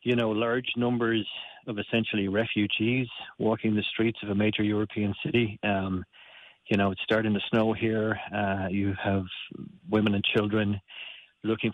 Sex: male